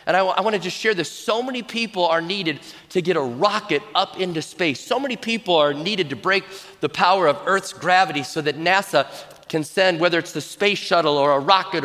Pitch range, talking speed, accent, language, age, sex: 150-195 Hz, 230 wpm, American, English, 30-49, male